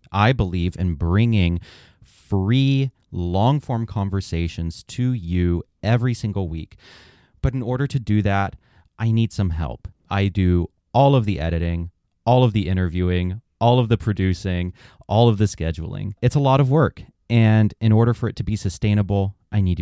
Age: 30-49